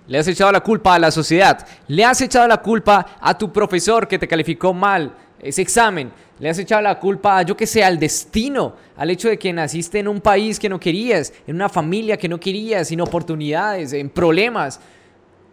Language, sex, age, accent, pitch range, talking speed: Spanish, male, 20-39, Colombian, 170-215 Hz, 210 wpm